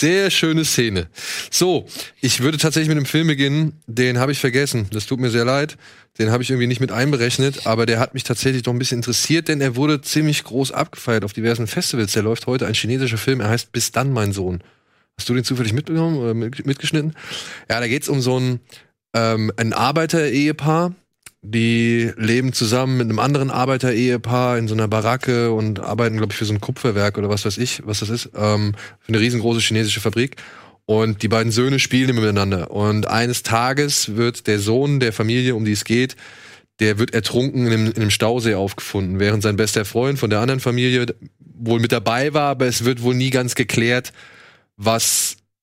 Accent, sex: German, male